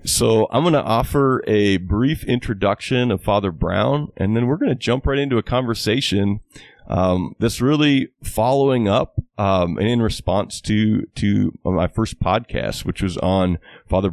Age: 30-49